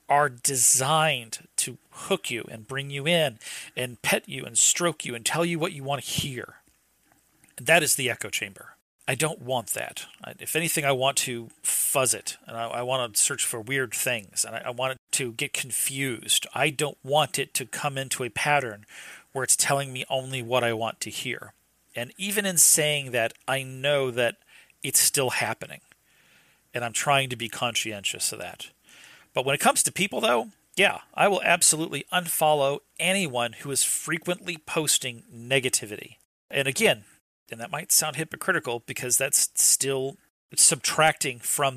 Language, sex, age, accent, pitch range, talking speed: English, male, 40-59, American, 120-155 Hz, 180 wpm